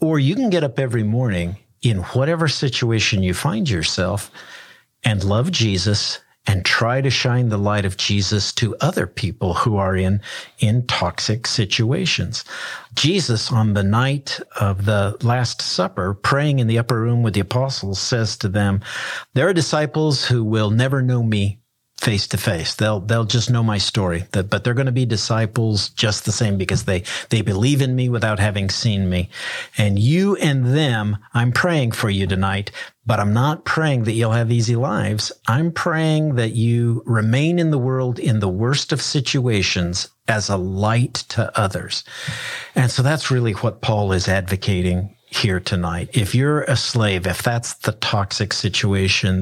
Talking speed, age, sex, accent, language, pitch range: 175 wpm, 50-69, male, American, English, 100-130 Hz